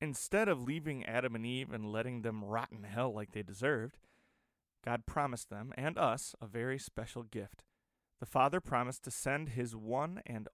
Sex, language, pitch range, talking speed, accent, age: male, English, 115-145 Hz, 180 wpm, American, 30-49